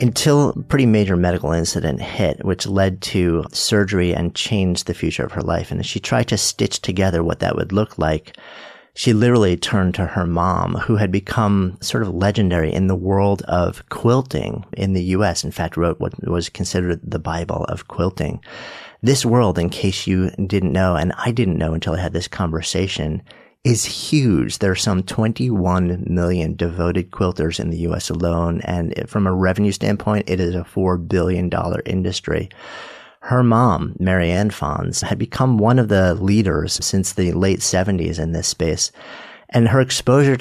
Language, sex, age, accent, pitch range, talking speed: English, male, 40-59, American, 85-105 Hz, 180 wpm